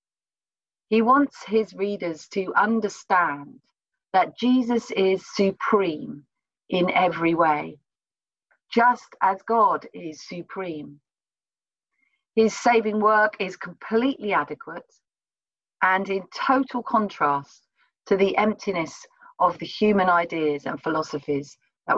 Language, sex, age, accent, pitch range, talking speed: English, female, 40-59, British, 175-230 Hz, 105 wpm